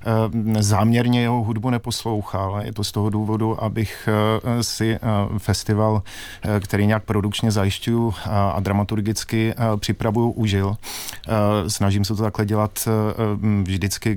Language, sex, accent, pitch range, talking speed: Czech, male, native, 100-110 Hz, 110 wpm